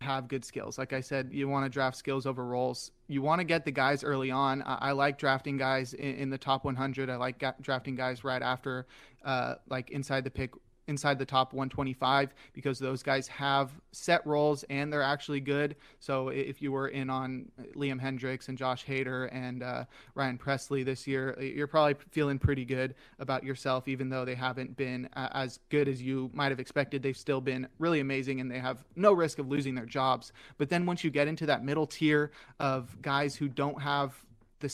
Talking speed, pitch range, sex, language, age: 210 wpm, 130-145 Hz, male, English, 30-49